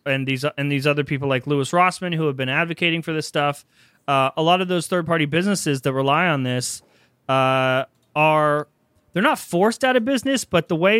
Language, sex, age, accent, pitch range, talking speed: English, male, 30-49, American, 135-170 Hz, 215 wpm